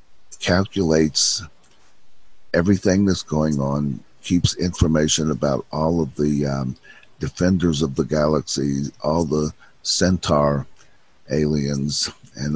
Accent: American